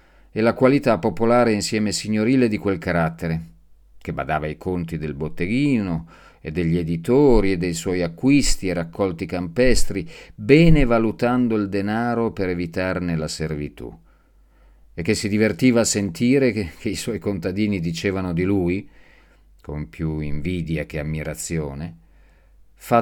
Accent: native